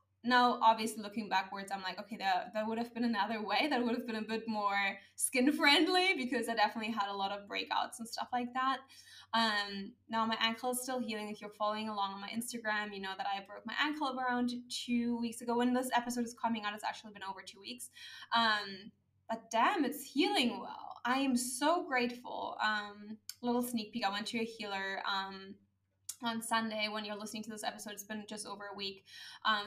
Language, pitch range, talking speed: English, 210-250 Hz, 220 wpm